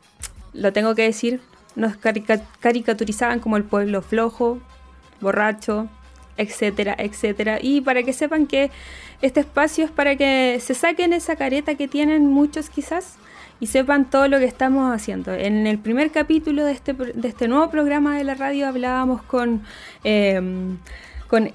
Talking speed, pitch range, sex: 150 wpm, 220-275 Hz, female